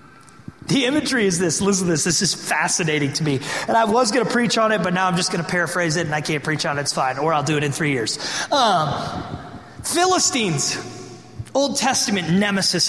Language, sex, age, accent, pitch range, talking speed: English, male, 30-49, American, 155-225 Hz, 225 wpm